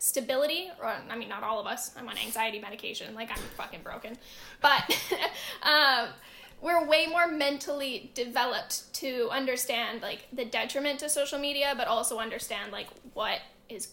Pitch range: 250-300 Hz